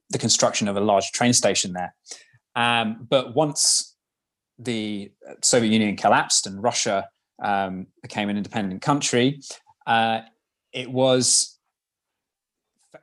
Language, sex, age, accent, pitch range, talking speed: English, male, 20-39, British, 115-140 Hz, 120 wpm